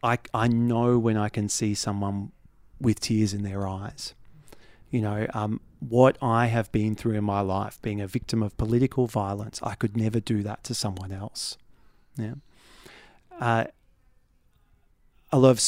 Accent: Australian